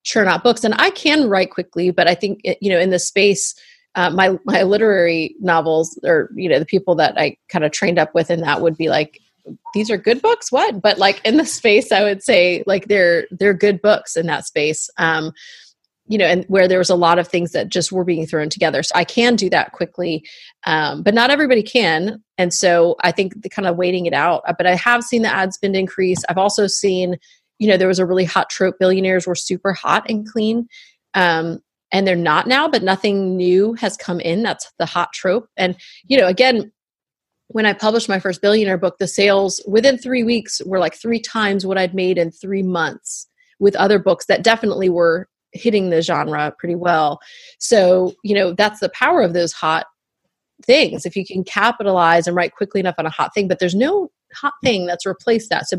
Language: English